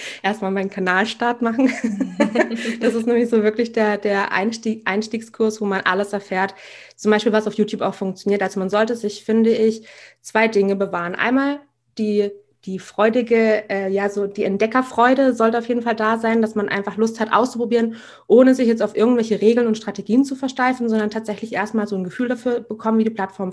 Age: 20-39